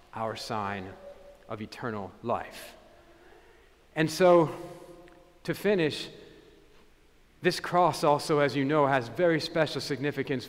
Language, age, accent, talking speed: English, 40-59, American, 110 wpm